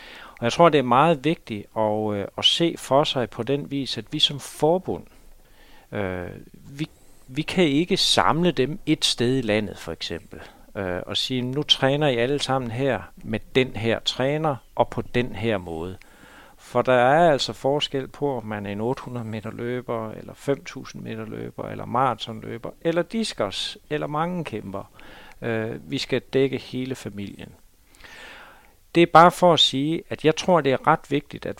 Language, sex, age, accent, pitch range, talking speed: Danish, male, 60-79, native, 110-150 Hz, 180 wpm